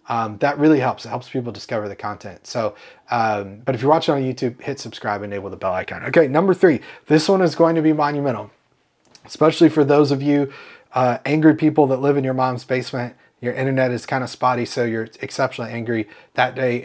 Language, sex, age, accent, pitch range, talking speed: English, male, 30-49, American, 115-150 Hz, 215 wpm